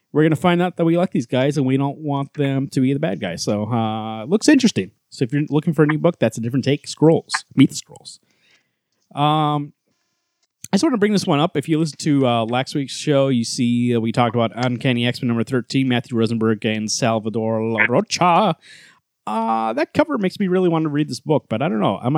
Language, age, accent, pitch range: English, 30-49, American, 120-175 Hz